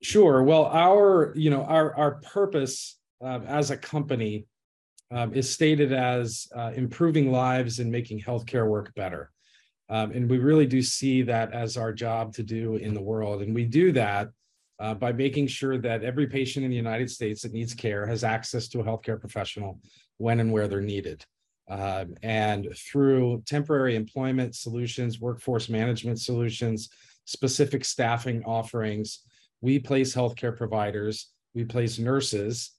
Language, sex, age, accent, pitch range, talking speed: English, male, 40-59, American, 110-130 Hz, 160 wpm